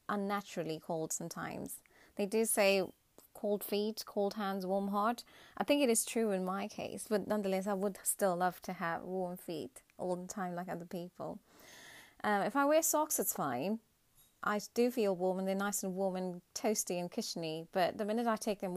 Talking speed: 200 wpm